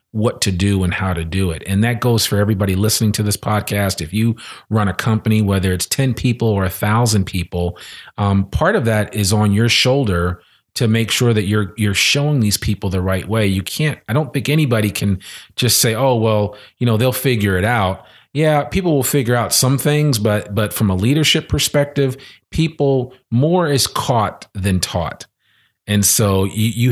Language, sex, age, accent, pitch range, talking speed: English, male, 40-59, American, 95-120 Hz, 200 wpm